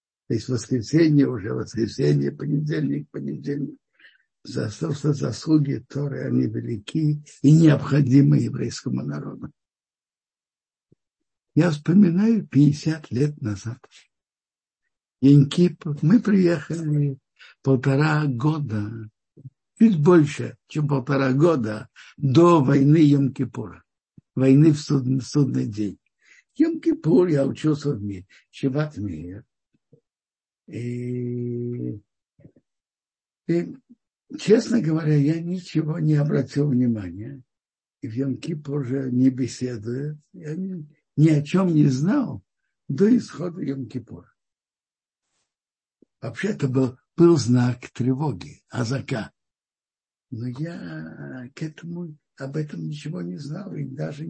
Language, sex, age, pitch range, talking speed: Russian, male, 60-79, 130-160 Hz, 95 wpm